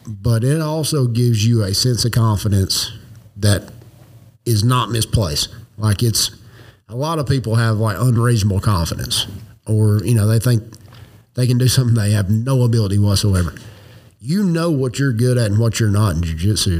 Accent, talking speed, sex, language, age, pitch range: American, 180 wpm, male, English, 50-69, 105-125 Hz